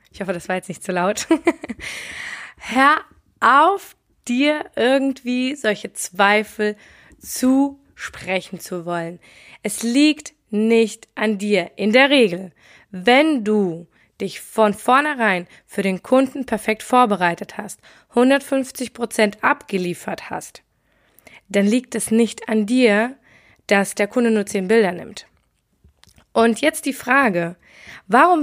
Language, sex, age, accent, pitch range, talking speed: German, female, 20-39, German, 195-235 Hz, 125 wpm